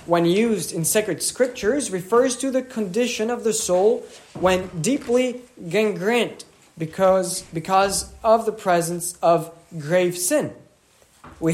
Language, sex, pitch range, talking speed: English, male, 175-235 Hz, 125 wpm